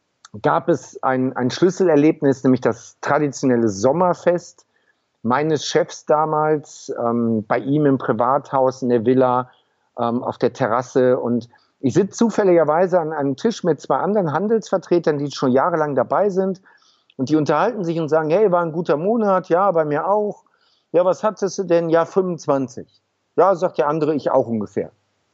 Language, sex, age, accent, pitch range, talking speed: German, male, 50-69, German, 130-170 Hz, 165 wpm